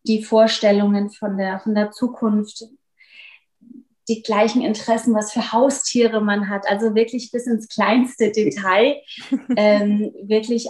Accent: German